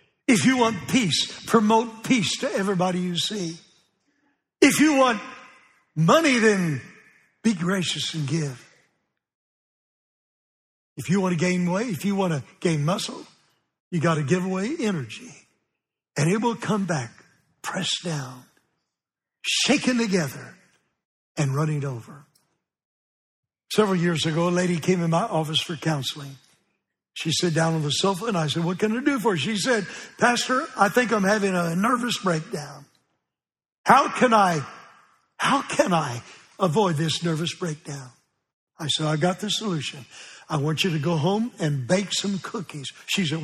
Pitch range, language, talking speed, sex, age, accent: 155-220 Hz, English, 155 wpm, male, 60-79, American